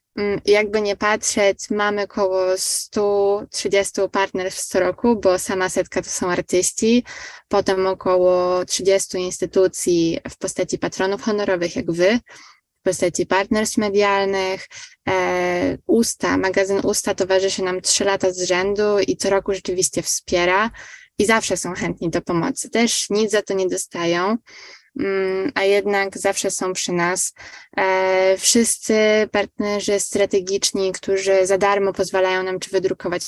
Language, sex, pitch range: Polish, female, 185-210 Hz